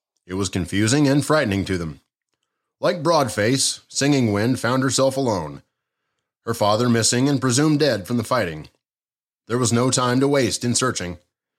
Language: English